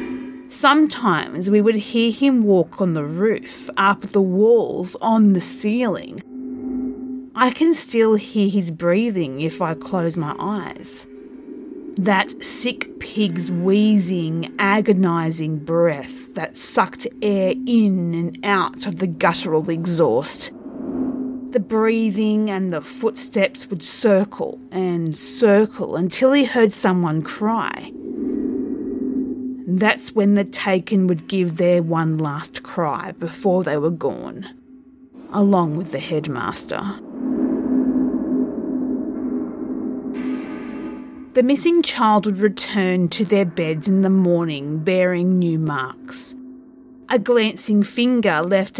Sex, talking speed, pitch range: female, 115 wpm, 180-260 Hz